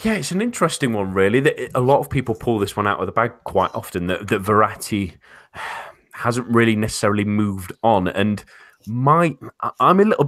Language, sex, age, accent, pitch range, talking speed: English, male, 30-49, British, 95-120 Hz, 195 wpm